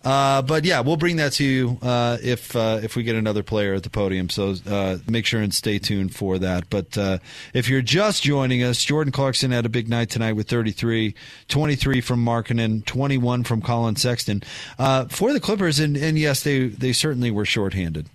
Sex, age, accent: male, 30-49, American